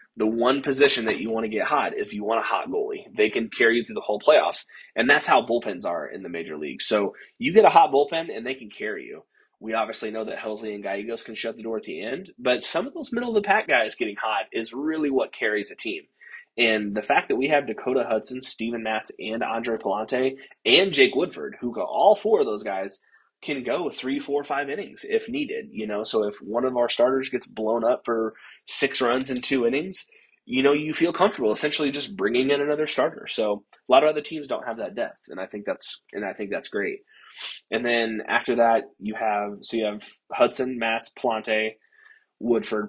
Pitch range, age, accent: 110-155 Hz, 20-39, American